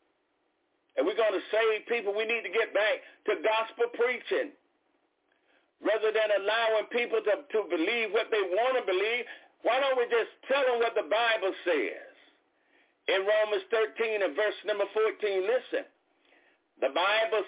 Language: English